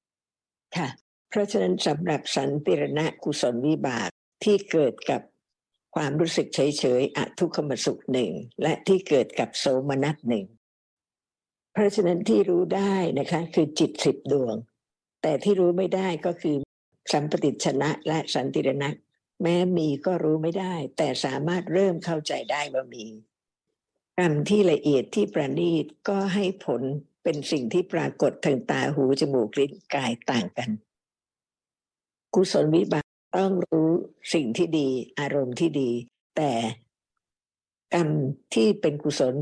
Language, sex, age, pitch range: Thai, female, 60-79, 140-180 Hz